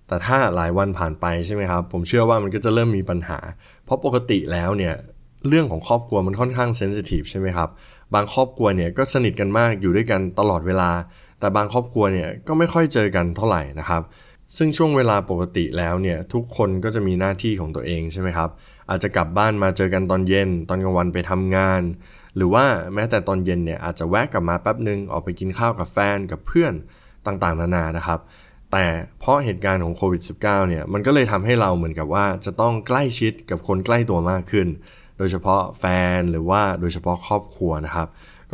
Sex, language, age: male, Thai, 20-39